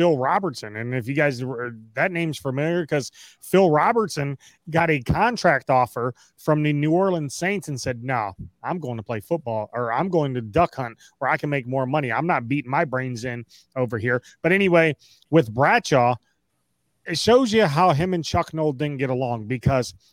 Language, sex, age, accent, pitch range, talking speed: English, male, 30-49, American, 130-185 Hz, 195 wpm